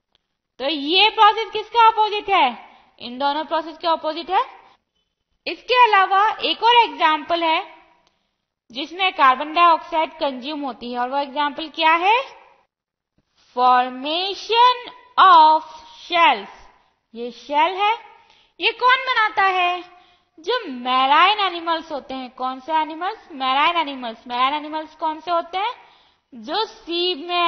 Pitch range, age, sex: 295-410 Hz, 20-39, female